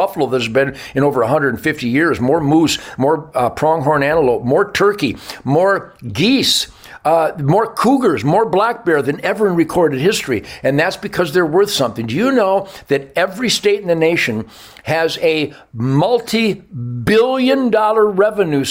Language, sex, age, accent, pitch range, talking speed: English, male, 60-79, American, 135-195 Hz, 155 wpm